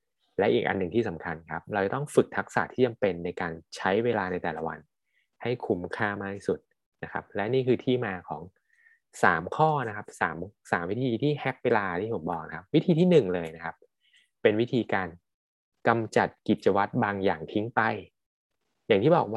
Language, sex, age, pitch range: Thai, male, 20-39, 90-120 Hz